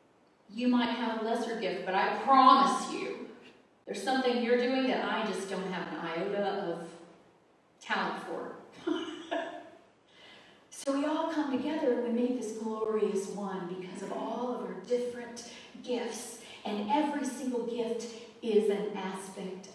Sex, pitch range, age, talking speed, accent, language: female, 190-245 Hz, 40-59, 150 wpm, American, English